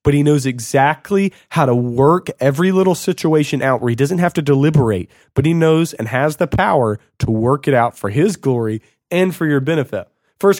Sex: male